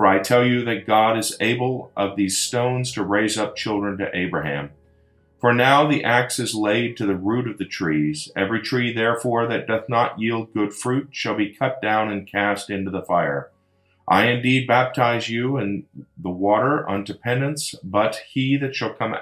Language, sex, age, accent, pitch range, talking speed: English, male, 40-59, American, 100-125 Hz, 190 wpm